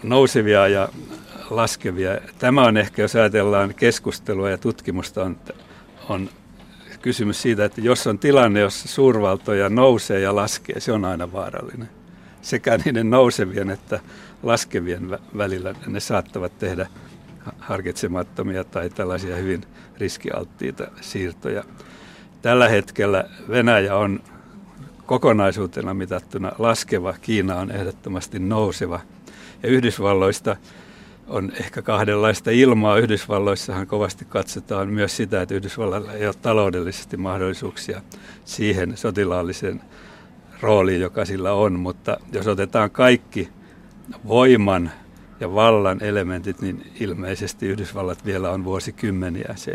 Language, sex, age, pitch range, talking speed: Finnish, male, 60-79, 95-110 Hz, 110 wpm